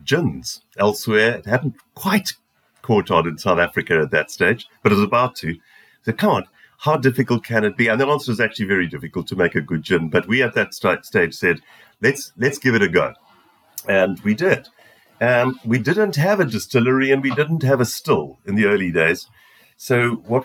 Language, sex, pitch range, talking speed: English, male, 100-135 Hz, 215 wpm